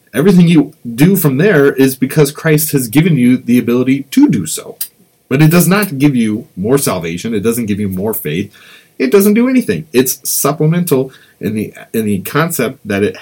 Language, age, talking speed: English, 30-49, 195 wpm